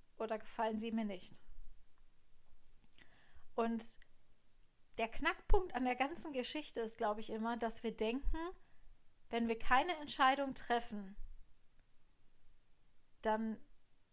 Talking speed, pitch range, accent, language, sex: 105 wpm, 220-250 Hz, German, German, female